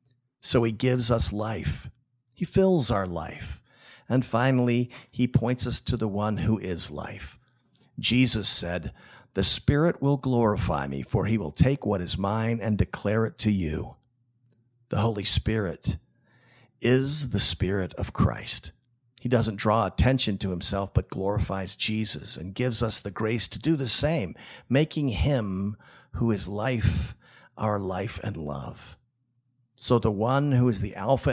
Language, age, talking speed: English, 50-69, 155 wpm